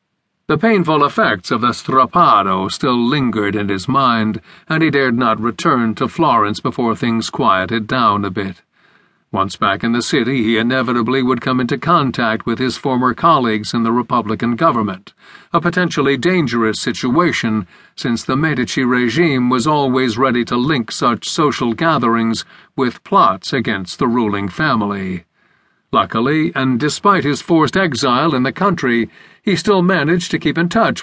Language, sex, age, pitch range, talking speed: English, male, 50-69, 115-145 Hz, 155 wpm